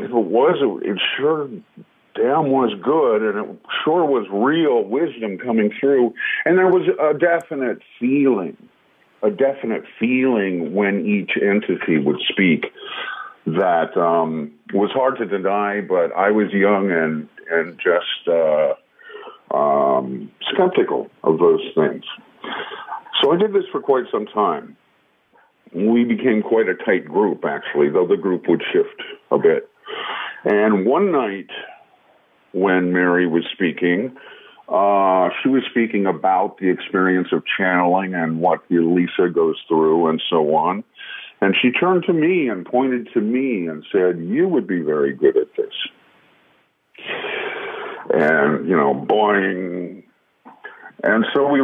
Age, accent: 50-69, American